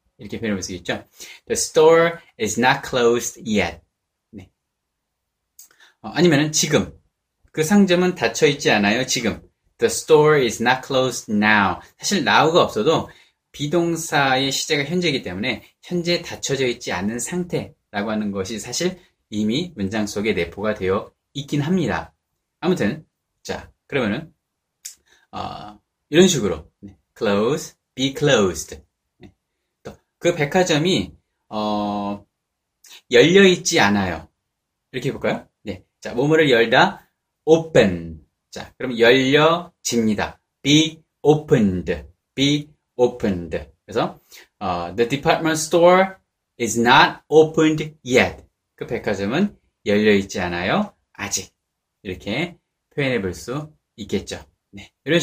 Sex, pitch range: male, 100-160 Hz